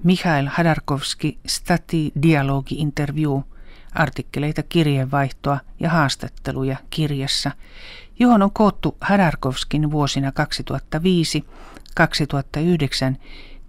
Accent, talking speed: native, 65 wpm